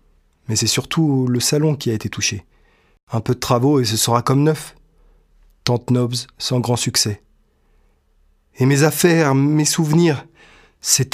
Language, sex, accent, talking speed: French, male, French, 155 wpm